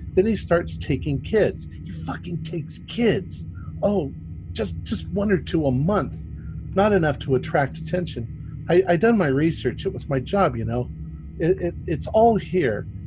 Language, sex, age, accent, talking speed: English, male, 50-69, American, 175 wpm